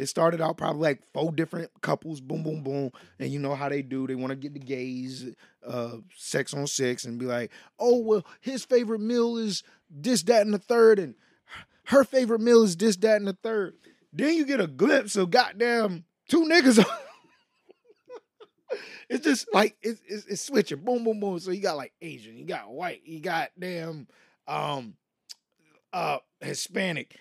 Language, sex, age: English, male, 20-39